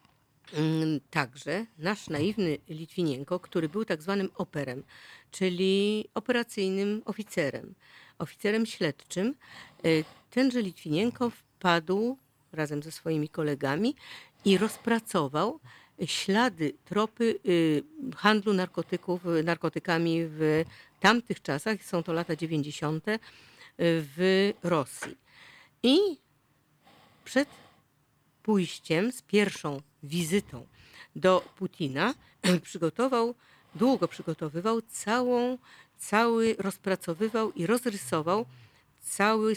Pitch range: 155-210 Hz